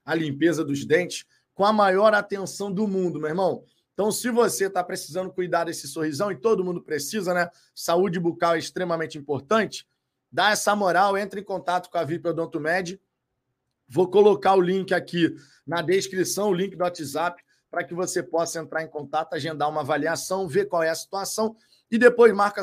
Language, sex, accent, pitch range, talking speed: Portuguese, male, Brazilian, 160-205 Hz, 180 wpm